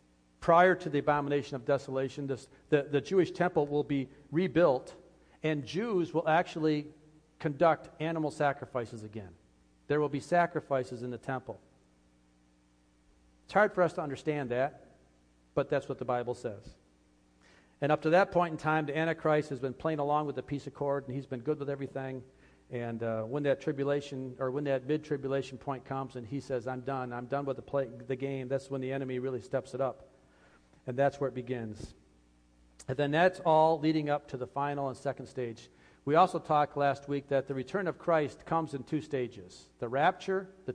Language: English